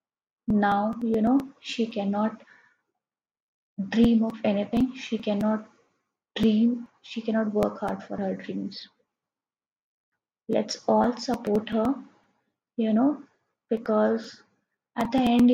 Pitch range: 210-245 Hz